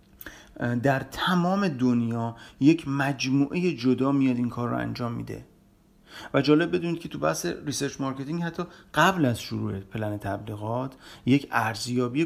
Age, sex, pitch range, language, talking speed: 40-59, male, 120-155 Hz, Persian, 135 wpm